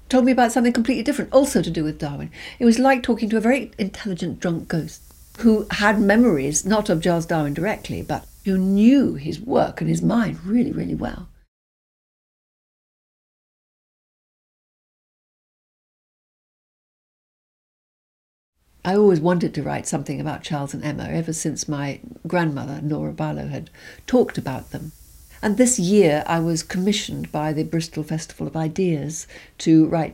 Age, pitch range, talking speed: 60-79, 150-200 Hz, 145 wpm